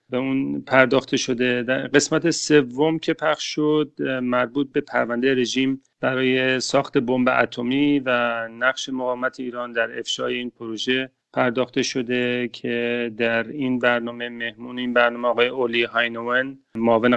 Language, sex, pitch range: English, male, 120-140 Hz